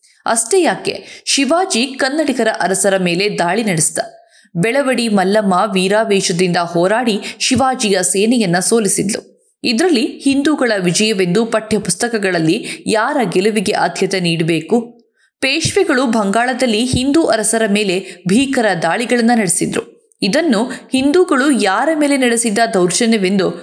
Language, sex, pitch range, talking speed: Kannada, female, 195-270 Hz, 95 wpm